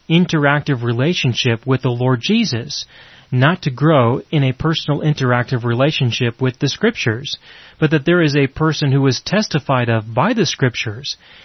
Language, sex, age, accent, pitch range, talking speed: English, male, 30-49, American, 125-150 Hz, 155 wpm